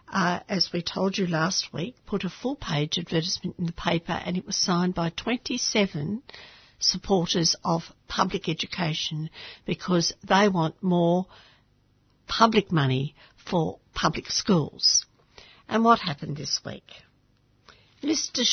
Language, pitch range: English, 150-195 Hz